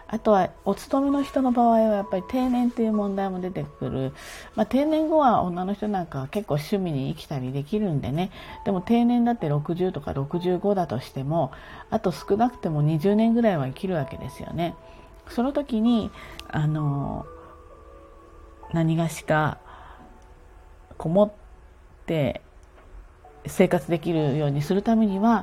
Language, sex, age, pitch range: Japanese, female, 40-59, 140-200 Hz